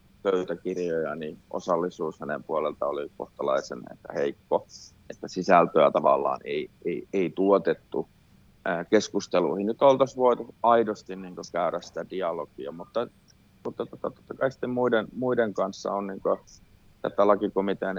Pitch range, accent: 95-110 Hz, native